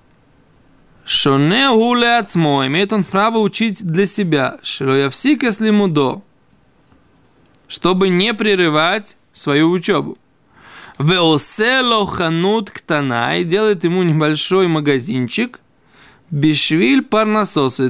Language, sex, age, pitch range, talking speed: Russian, male, 20-39, 150-205 Hz, 85 wpm